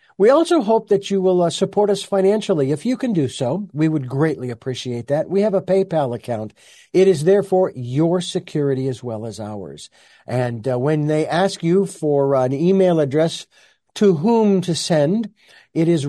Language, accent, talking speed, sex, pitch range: English, American, 190 wpm, male, 135-195 Hz